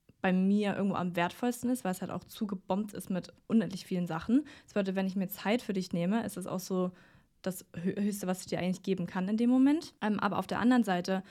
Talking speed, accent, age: 240 wpm, German, 20-39